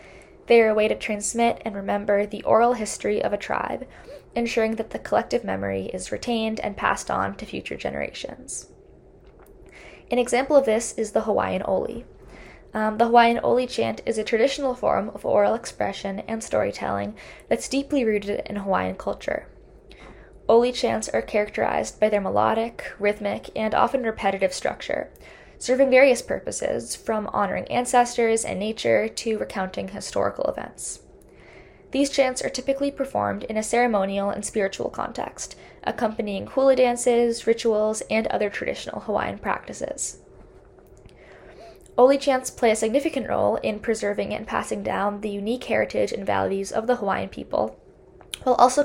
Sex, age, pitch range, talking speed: female, 10-29, 210-250 Hz, 150 wpm